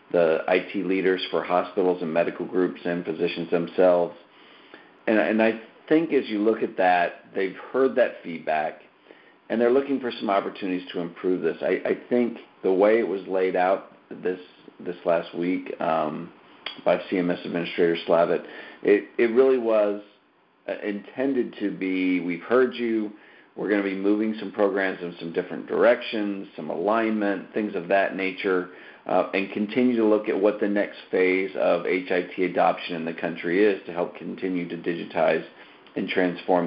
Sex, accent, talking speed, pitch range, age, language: male, American, 165 wpm, 90-105 Hz, 50-69, English